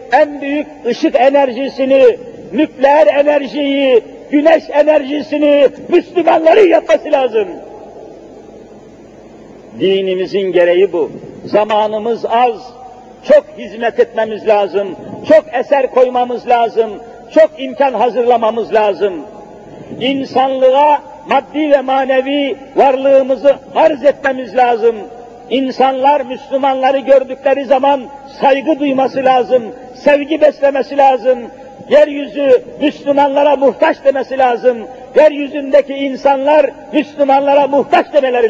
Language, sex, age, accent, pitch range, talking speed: Turkish, male, 50-69, native, 245-285 Hz, 85 wpm